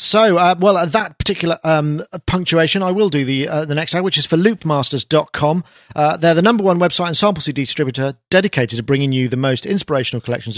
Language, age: English, 40-59